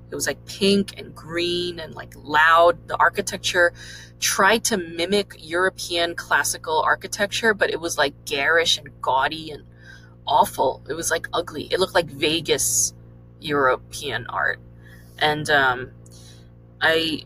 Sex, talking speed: female, 130 wpm